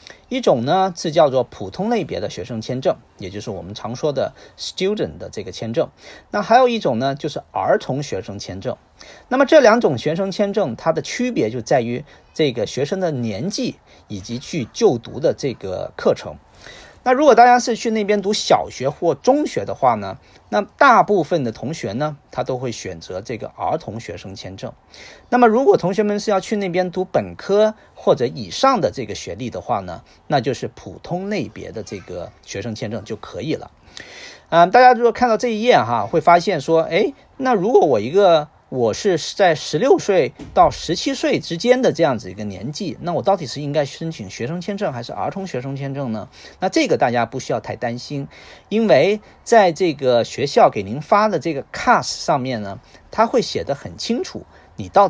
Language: Chinese